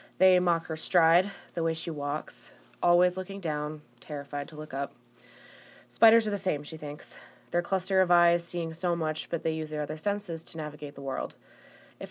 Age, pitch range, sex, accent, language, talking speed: 20-39, 145-185 Hz, female, American, English, 195 wpm